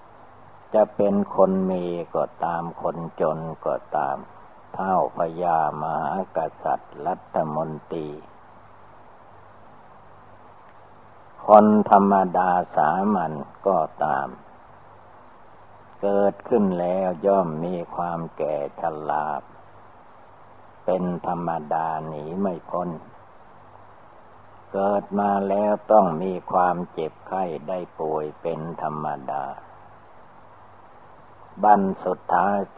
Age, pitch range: 60-79, 85-100 Hz